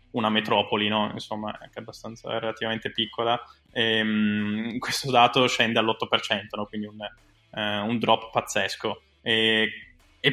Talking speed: 135 wpm